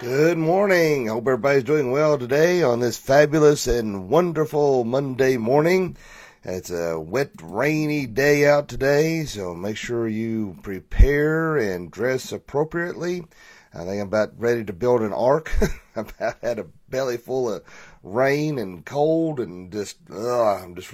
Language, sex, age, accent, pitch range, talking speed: English, male, 40-59, American, 105-145 Hz, 150 wpm